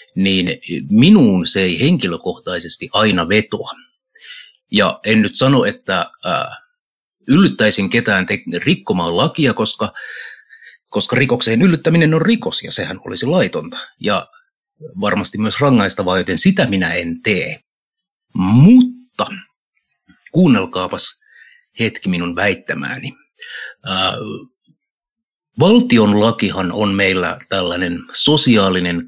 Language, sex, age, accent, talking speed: Finnish, male, 60-79, native, 95 wpm